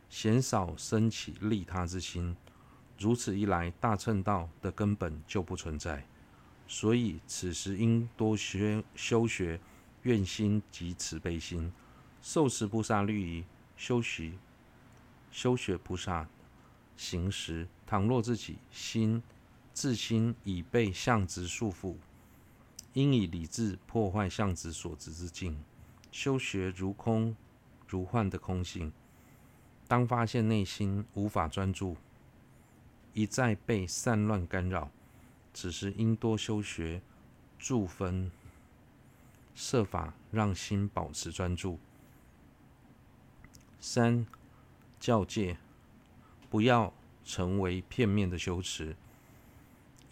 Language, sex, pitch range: Chinese, male, 90-115 Hz